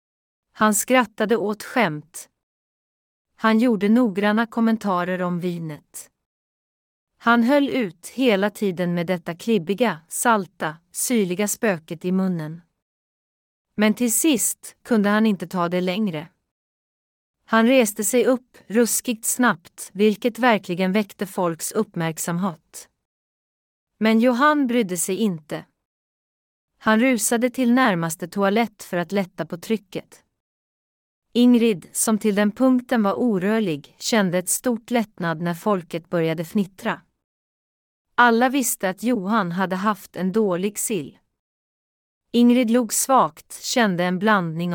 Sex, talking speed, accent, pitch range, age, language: female, 120 wpm, Swedish, 180-235 Hz, 30-49, English